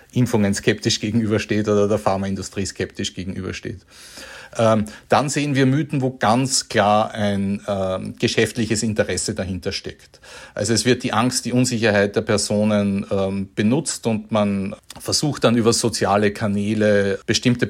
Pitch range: 100-125 Hz